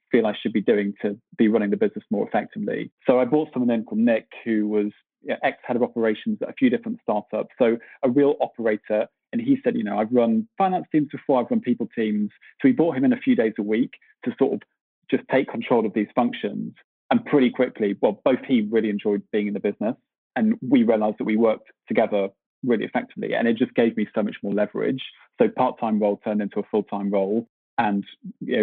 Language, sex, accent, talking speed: English, male, British, 220 wpm